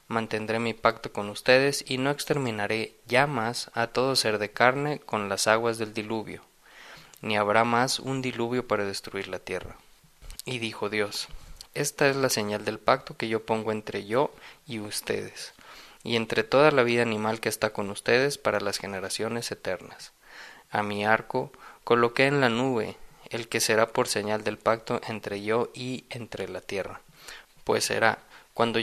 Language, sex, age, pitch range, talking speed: Spanish, male, 20-39, 105-125 Hz, 170 wpm